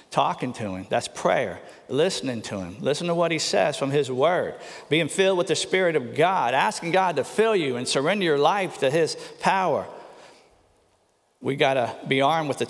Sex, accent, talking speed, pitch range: male, American, 200 wpm, 135-195 Hz